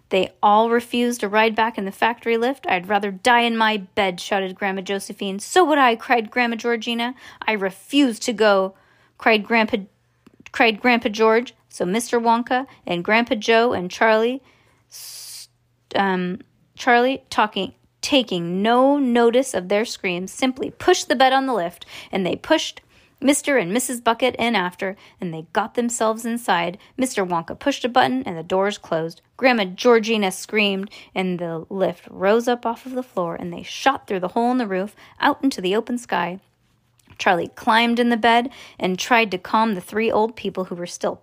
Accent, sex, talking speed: American, female, 180 wpm